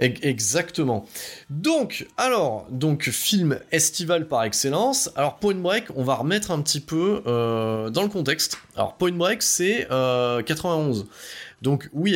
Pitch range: 125-175 Hz